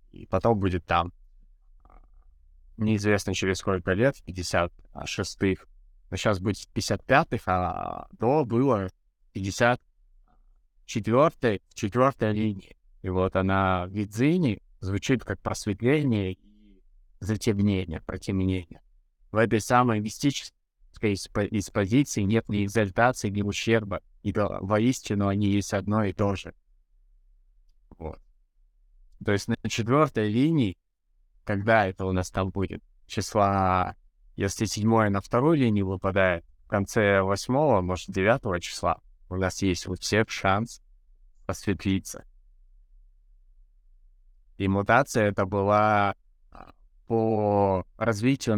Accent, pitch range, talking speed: native, 90-110 Hz, 105 wpm